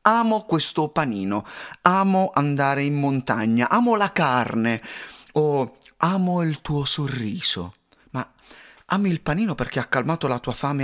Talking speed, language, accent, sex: 140 wpm, Italian, native, male